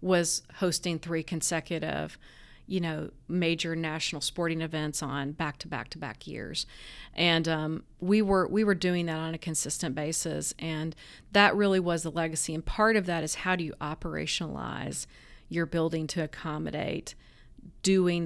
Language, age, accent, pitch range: English, 40-59, American, 160-185 Hz